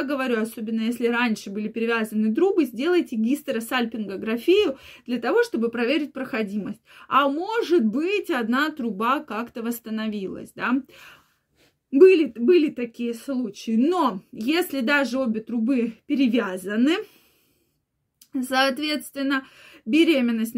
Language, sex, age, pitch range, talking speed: Russian, female, 20-39, 225-300 Hz, 100 wpm